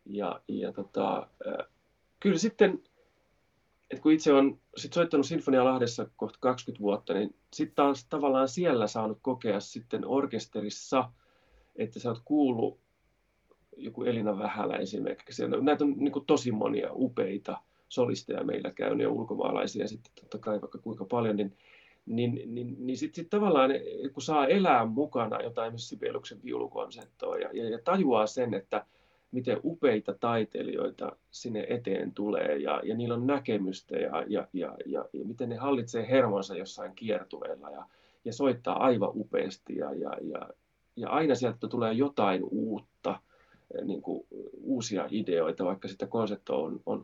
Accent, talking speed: native, 145 wpm